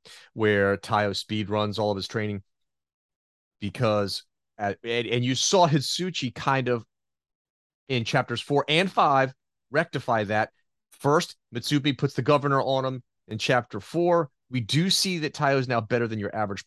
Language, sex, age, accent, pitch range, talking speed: English, male, 30-49, American, 105-140 Hz, 160 wpm